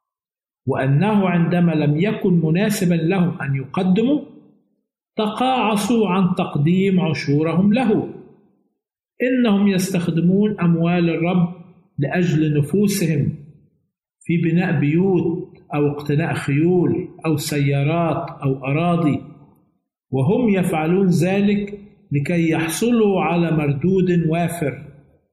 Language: Arabic